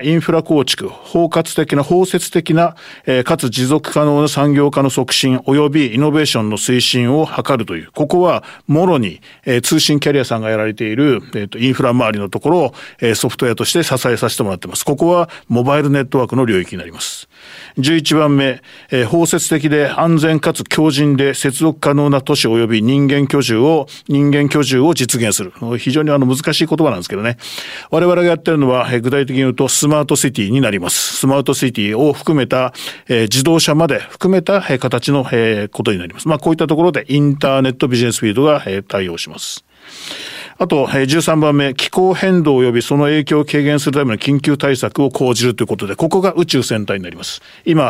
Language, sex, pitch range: Japanese, male, 125-155 Hz